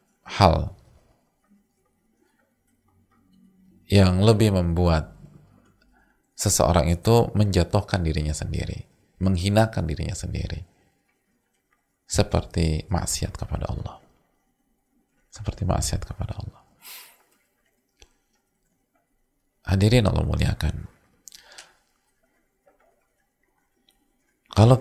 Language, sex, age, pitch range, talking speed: English, male, 40-59, 80-95 Hz, 60 wpm